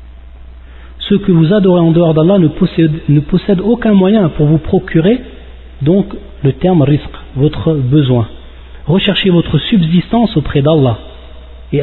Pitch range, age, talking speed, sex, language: 135-185 Hz, 40-59, 140 wpm, male, French